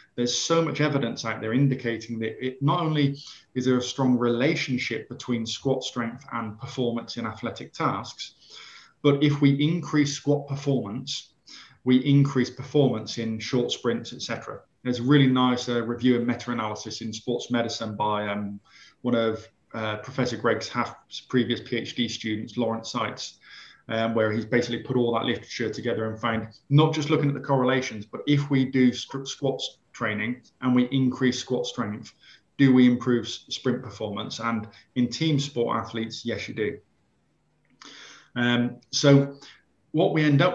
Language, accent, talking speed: Italian, British, 165 wpm